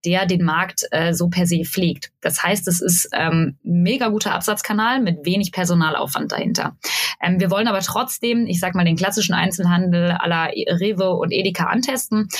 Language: German